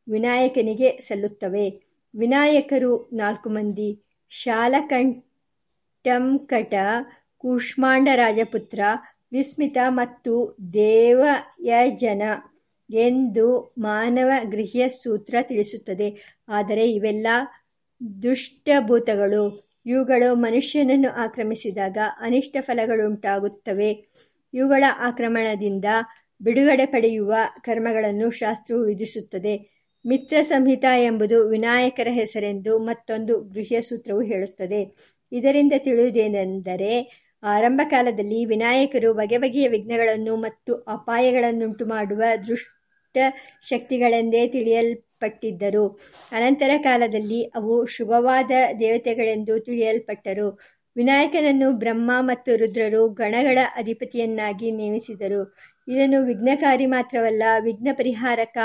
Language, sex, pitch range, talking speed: Kannada, male, 215-255 Hz, 70 wpm